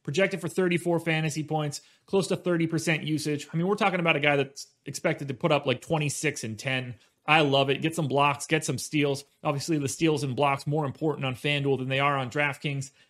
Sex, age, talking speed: male, 30-49, 220 wpm